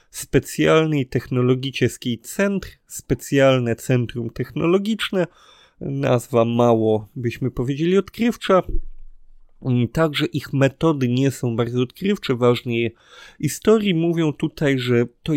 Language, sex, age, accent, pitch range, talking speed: Polish, male, 30-49, native, 120-160 Hz, 100 wpm